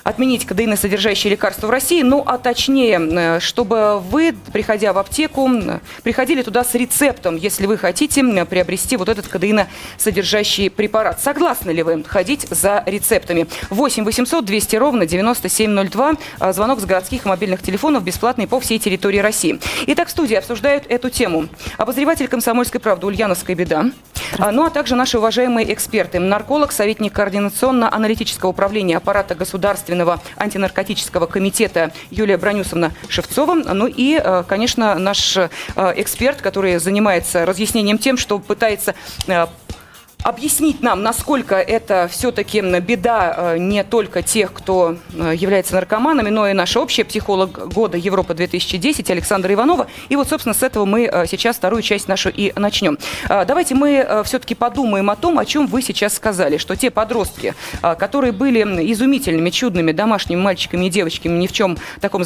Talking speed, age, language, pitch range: 140 wpm, 30-49, Russian, 190-250 Hz